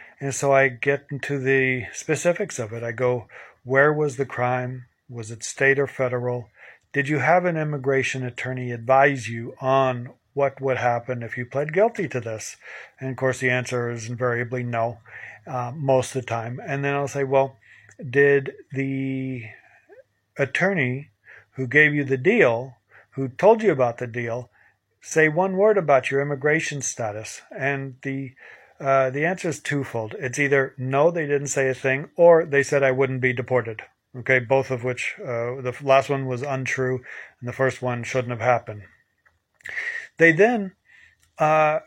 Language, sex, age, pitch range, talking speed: English, male, 50-69, 125-140 Hz, 170 wpm